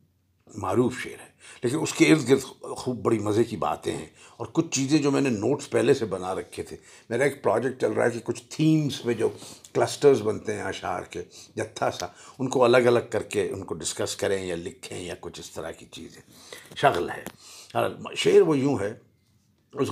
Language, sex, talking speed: Urdu, male, 210 wpm